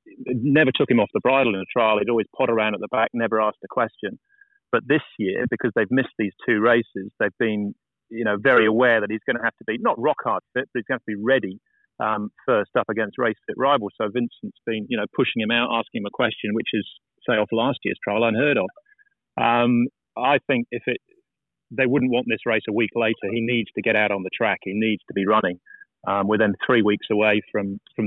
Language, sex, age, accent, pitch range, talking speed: English, male, 30-49, British, 110-135 Hz, 245 wpm